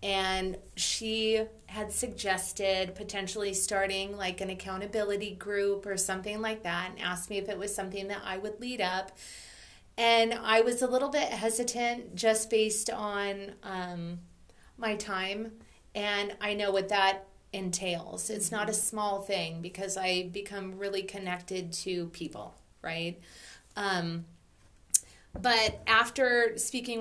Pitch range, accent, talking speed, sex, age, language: 190-215 Hz, American, 135 wpm, female, 30-49, English